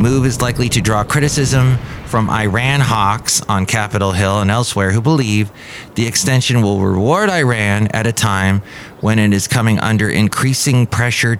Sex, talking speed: male, 165 wpm